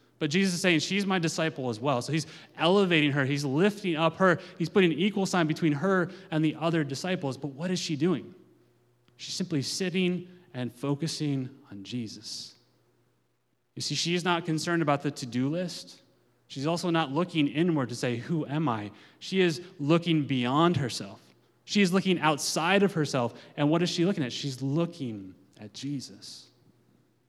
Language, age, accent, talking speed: English, 30-49, American, 175 wpm